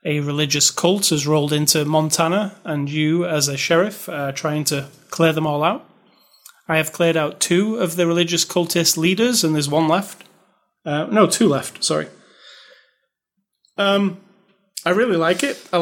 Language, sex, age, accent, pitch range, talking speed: English, male, 30-49, British, 160-210 Hz, 165 wpm